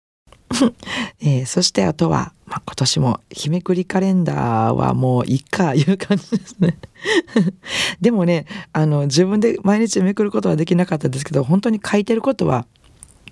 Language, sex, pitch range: Japanese, female, 135-180 Hz